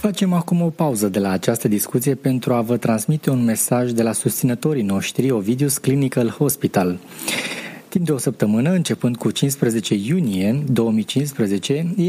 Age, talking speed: 20-39, 150 wpm